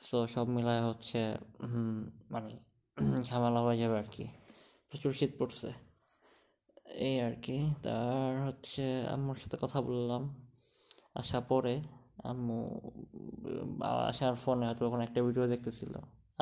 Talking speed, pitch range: 115 wpm, 115-125 Hz